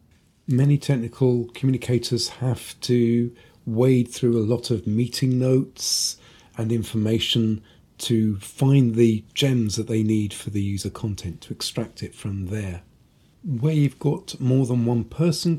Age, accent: 40-59, British